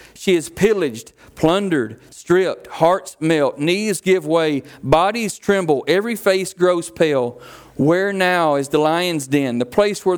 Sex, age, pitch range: male, 40-59, 145-180 Hz